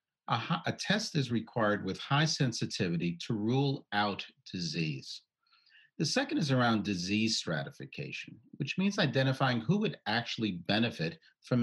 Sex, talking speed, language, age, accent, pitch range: male, 130 wpm, English, 50-69, American, 100-155 Hz